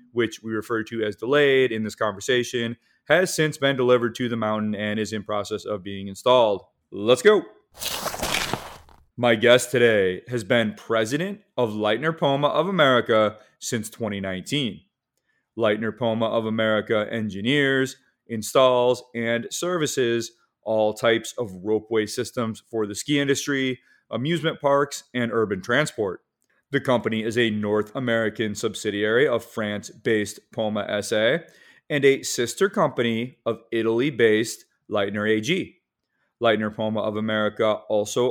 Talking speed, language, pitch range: 130 wpm, English, 105-125 Hz